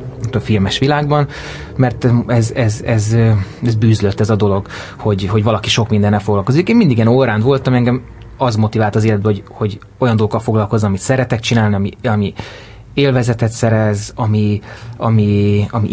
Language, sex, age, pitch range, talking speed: Hungarian, male, 30-49, 105-120 Hz, 160 wpm